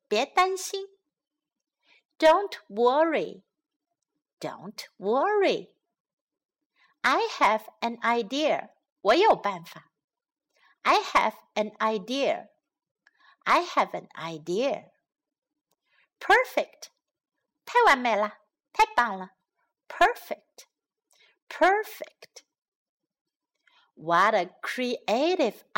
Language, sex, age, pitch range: Chinese, female, 60-79, 210-305 Hz